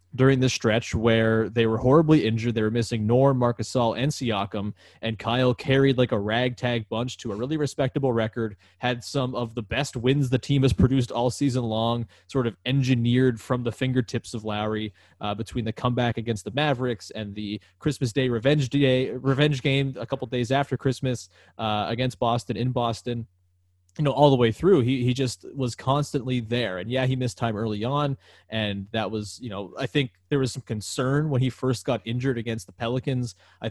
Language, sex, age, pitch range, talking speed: English, male, 20-39, 110-130 Hz, 200 wpm